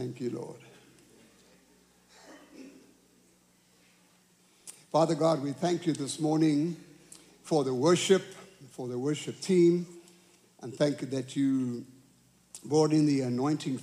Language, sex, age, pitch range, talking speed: English, male, 60-79, 125-155 Hz, 115 wpm